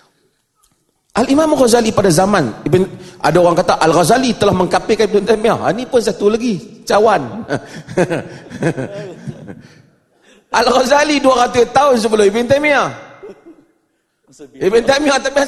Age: 30-49